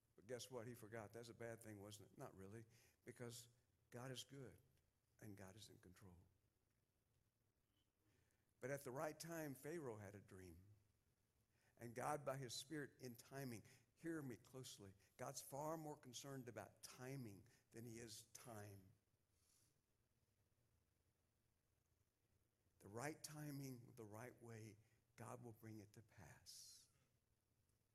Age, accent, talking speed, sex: 60-79, American, 135 wpm, male